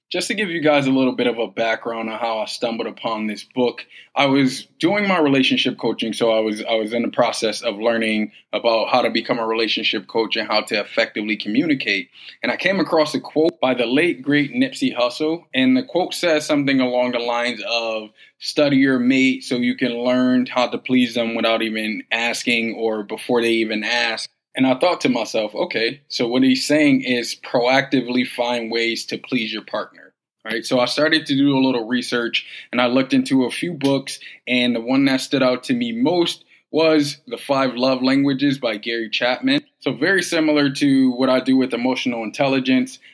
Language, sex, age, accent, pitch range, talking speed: English, male, 20-39, American, 115-135 Hz, 205 wpm